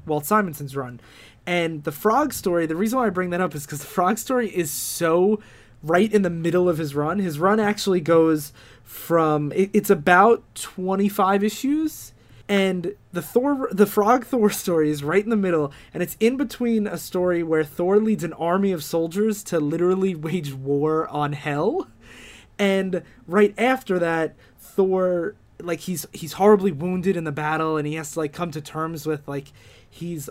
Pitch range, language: 150-190 Hz, English